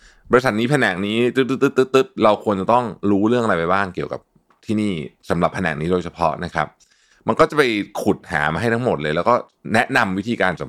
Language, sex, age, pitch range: Thai, male, 20-39, 85-120 Hz